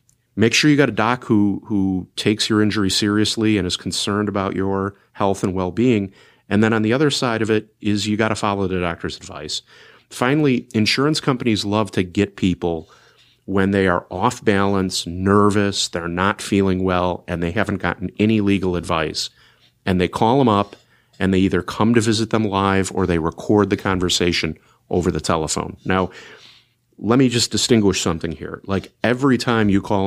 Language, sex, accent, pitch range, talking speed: English, male, American, 90-110 Hz, 185 wpm